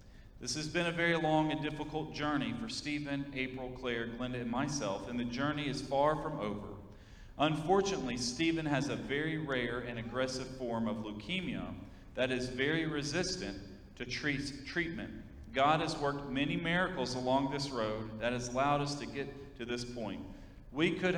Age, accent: 40-59, American